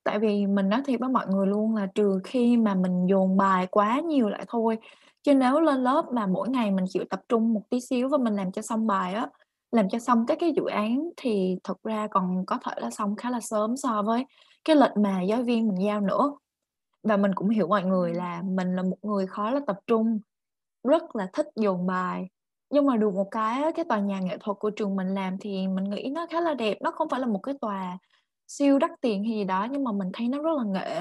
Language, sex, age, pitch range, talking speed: Vietnamese, female, 20-39, 195-255 Hz, 250 wpm